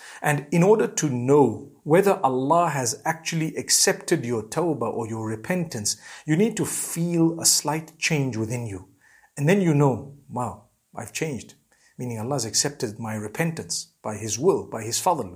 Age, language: 50-69, English